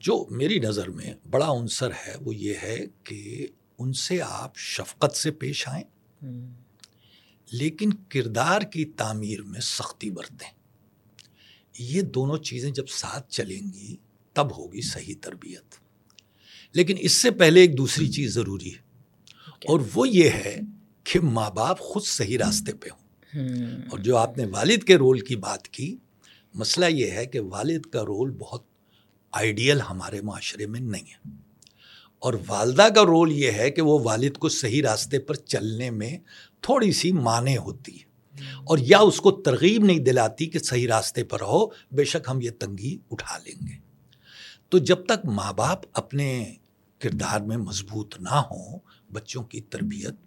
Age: 60-79